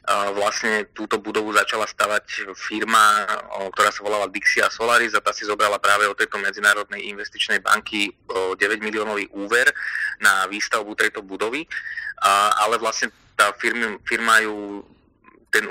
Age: 20-39